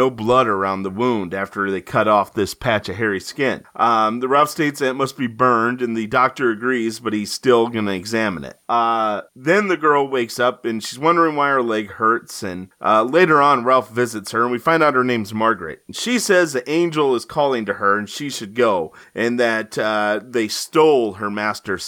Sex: male